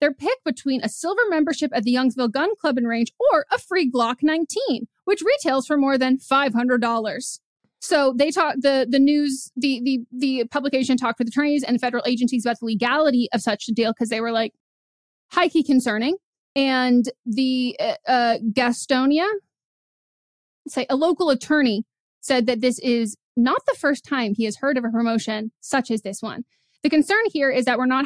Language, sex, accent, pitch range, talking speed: English, female, American, 235-280 Hz, 190 wpm